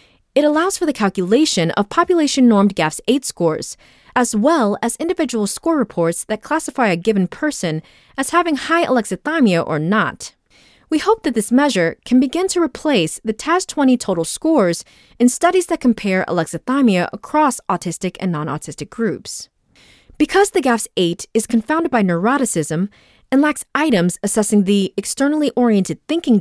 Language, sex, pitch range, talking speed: English, female, 175-290 Hz, 145 wpm